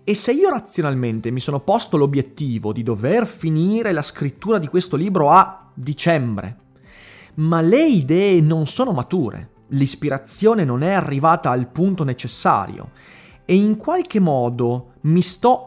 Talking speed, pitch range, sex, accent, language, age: 140 wpm, 120-175 Hz, male, native, Italian, 30-49